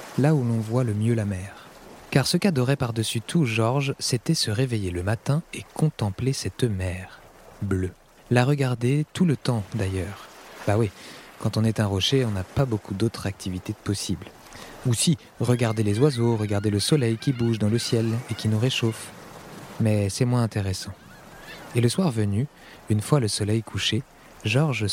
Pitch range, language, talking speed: 100-125 Hz, French, 180 wpm